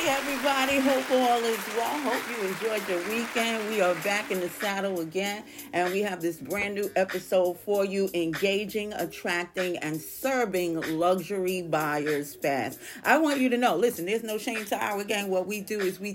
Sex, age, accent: female, 40-59, American